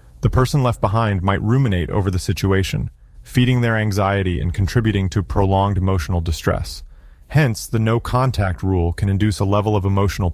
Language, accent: English, American